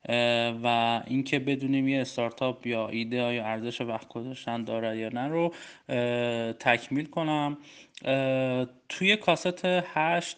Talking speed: 115 wpm